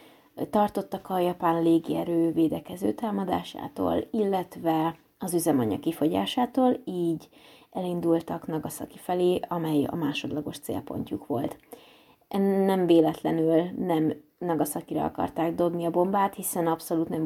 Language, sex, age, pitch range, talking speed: Hungarian, female, 20-39, 160-190 Hz, 105 wpm